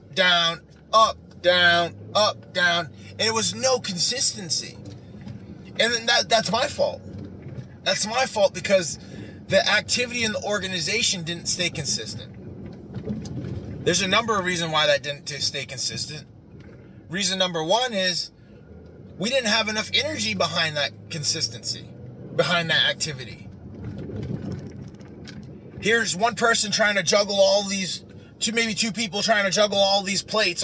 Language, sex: English, male